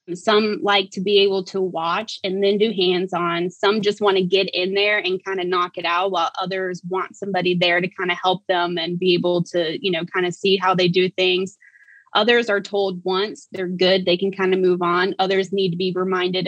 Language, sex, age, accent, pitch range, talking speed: English, female, 20-39, American, 180-205 Hz, 235 wpm